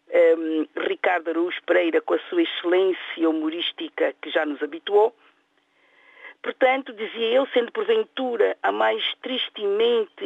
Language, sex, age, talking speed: Portuguese, female, 50-69, 115 wpm